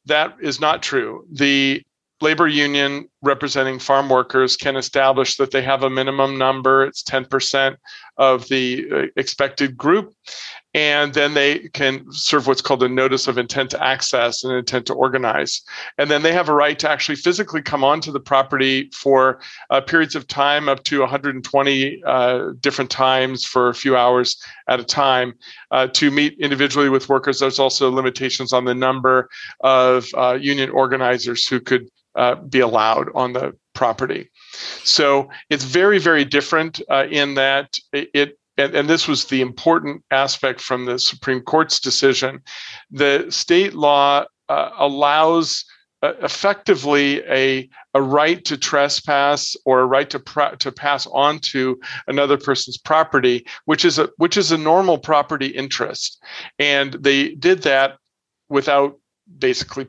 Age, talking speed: 40-59, 155 wpm